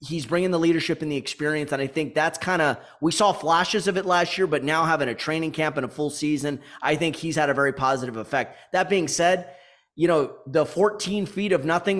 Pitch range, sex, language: 150-185 Hz, male, English